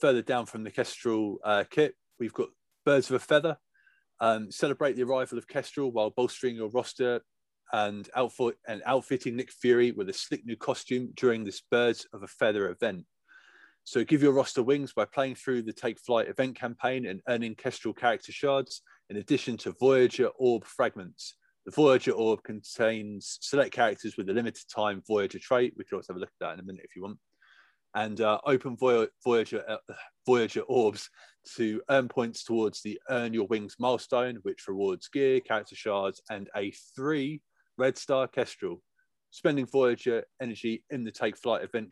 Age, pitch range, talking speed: 30-49, 105-135 Hz, 180 wpm